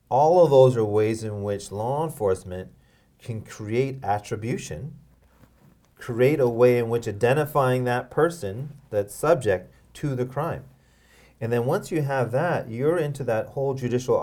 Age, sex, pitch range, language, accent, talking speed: 30-49, male, 105-130 Hz, English, American, 150 wpm